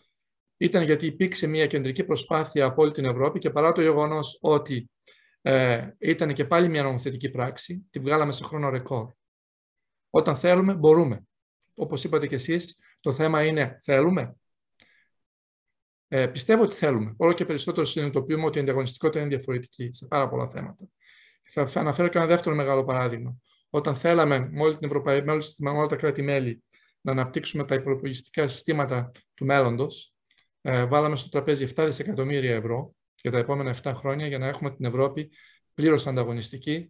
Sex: male